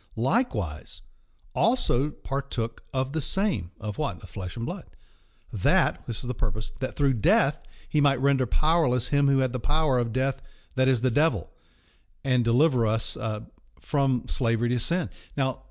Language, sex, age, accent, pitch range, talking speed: English, male, 50-69, American, 115-160 Hz, 170 wpm